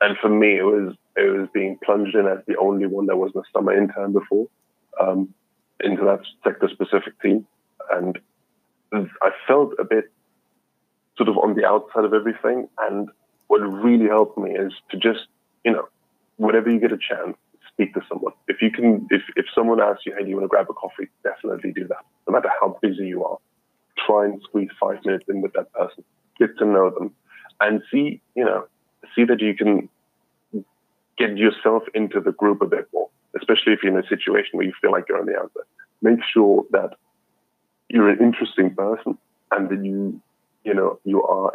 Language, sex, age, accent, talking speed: English, male, 20-39, British, 200 wpm